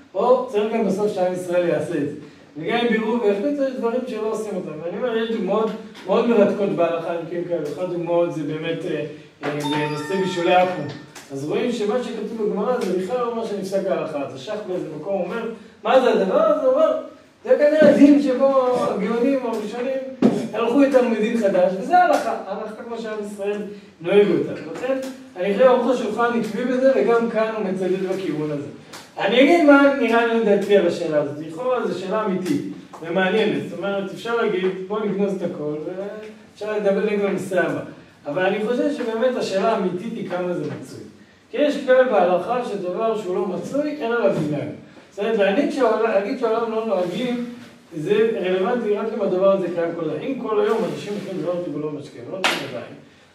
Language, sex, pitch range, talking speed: Hebrew, male, 180-235 Hz, 160 wpm